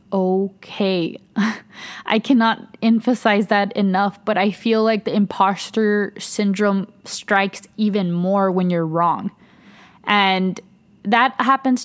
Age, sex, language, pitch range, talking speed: 20-39, female, English, 190-225 Hz, 110 wpm